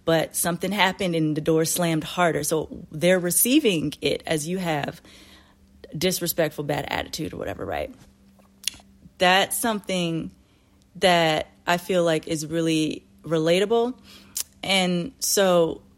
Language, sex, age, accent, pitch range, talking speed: English, female, 30-49, American, 155-185 Hz, 120 wpm